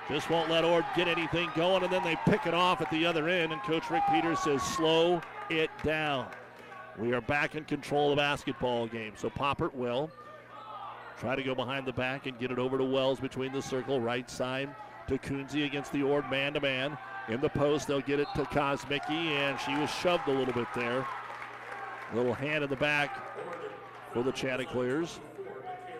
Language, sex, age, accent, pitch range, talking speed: English, male, 50-69, American, 135-175 Hz, 195 wpm